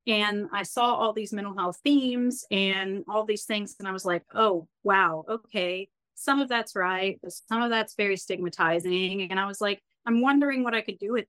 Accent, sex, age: American, female, 30-49